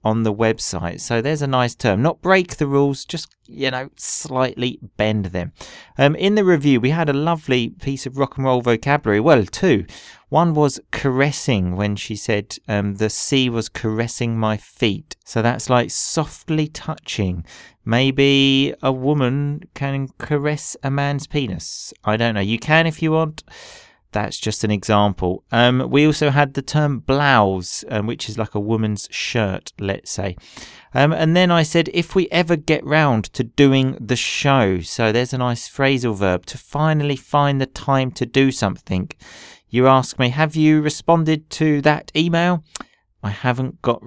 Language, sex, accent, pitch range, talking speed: English, male, British, 110-145 Hz, 175 wpm